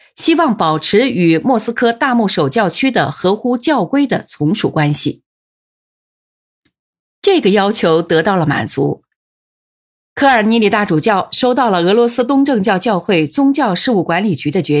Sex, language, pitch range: female, Chinese, 170-255 Hz